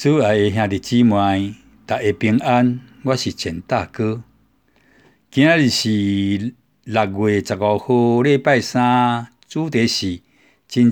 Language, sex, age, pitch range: Chinese, male, 60-79, 105-130 Hz